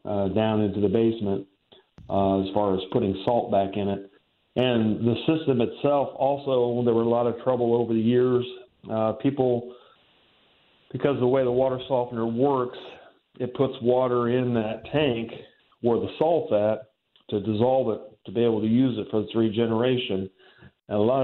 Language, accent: English, American